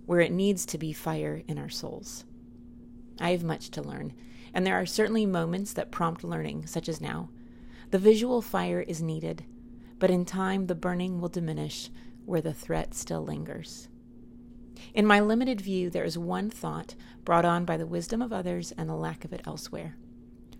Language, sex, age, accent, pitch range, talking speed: English, female, 30-49, American, 120-190 Hz, 185 wpm